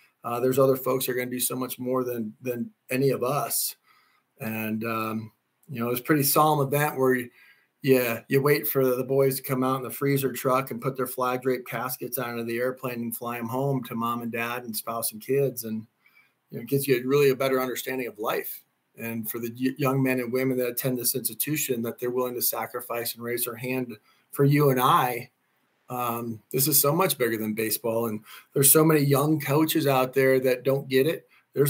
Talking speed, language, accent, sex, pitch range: 225 wpm, English, American, male, 120-135 Hz